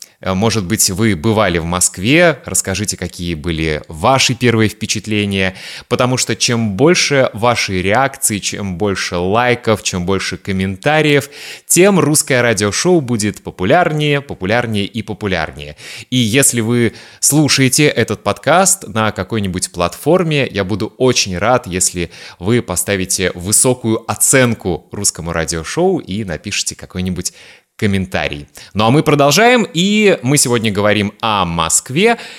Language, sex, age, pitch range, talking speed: Russian, male, 20-39, 100-145 Hz, 120 wpm